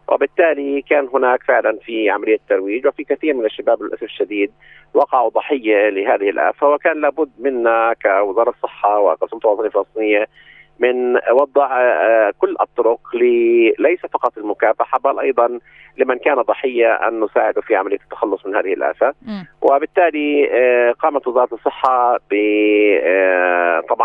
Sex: male